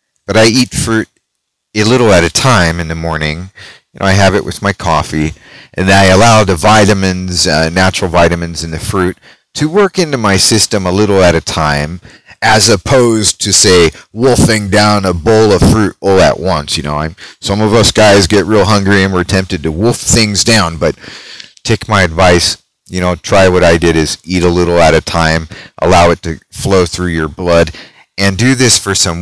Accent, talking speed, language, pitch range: American, 205 wpm, English, 85-105 Hz